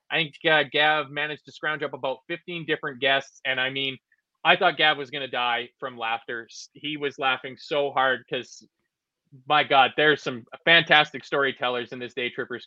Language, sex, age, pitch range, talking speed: English, male, 20-39, 130-165 Hz, 185 wpm